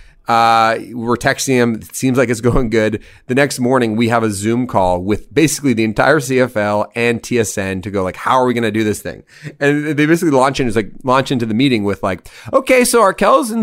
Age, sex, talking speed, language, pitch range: 30-49, male, 235 wpm, English, 105-140 Hz